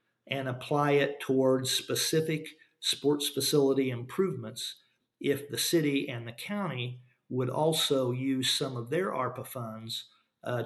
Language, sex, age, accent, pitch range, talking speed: English, male, 50-69, American, 125-140 Hz, 130 wpm